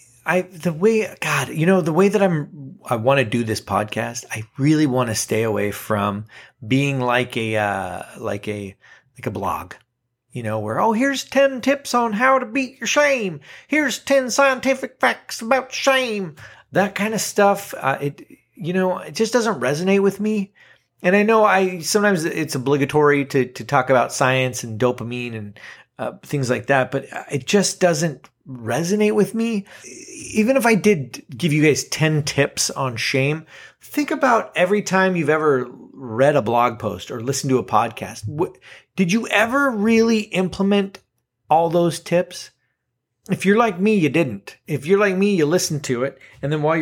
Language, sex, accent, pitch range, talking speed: English, male, American, 130-210 Hz, 180 wpm